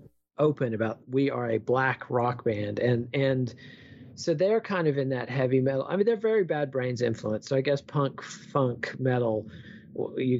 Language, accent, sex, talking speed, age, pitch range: English, American, male, 185 wpm, 40-59, 120-145 Hz